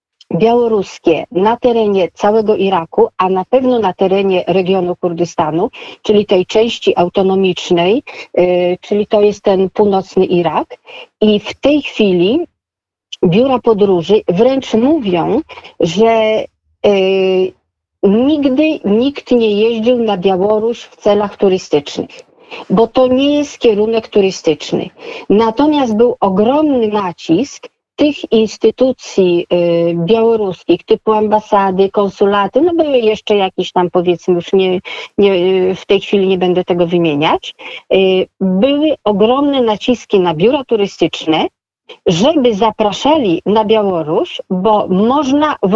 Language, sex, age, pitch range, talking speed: Polish, female, 50-69, 185-245 Hz, 110 wpm